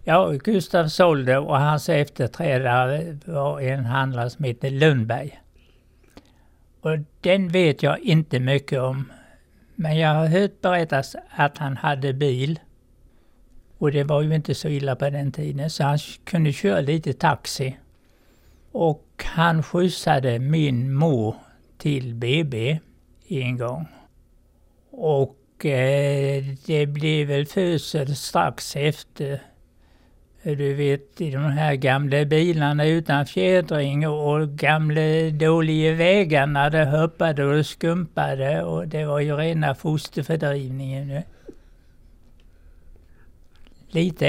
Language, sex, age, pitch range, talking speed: Swedish, male, 60-79, 135-155 Hz, 115 wpm